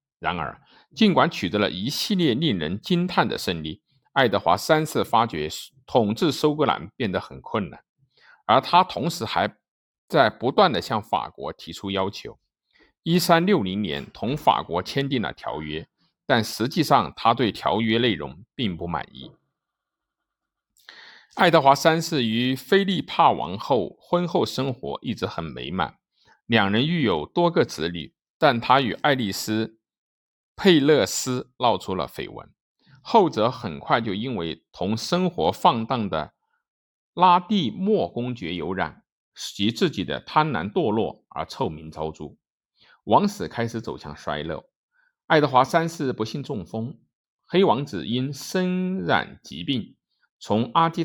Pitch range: 110-175 Hz